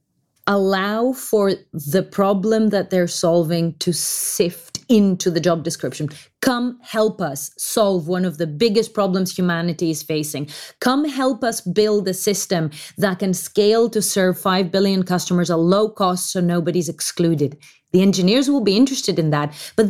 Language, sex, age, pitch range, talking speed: English, female, 30-49, 170-210 Hz, 160 wpm